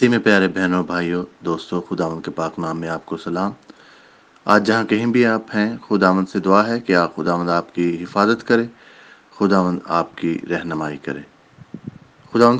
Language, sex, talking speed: English, male, 155 wpm